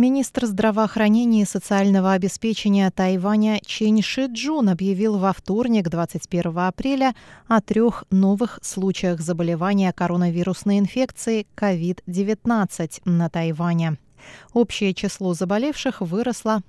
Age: 20-39